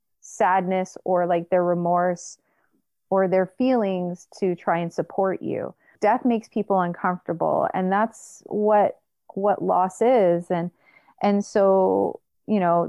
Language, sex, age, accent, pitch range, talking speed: English, female, 30-49, American, 175-210 Hz, 130 wpm